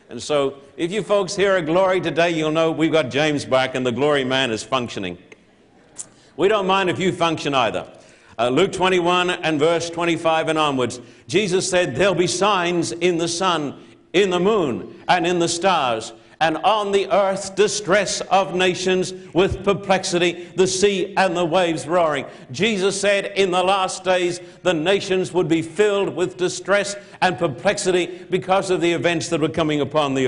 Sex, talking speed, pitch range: male, 180 wpm, 165-195 Hz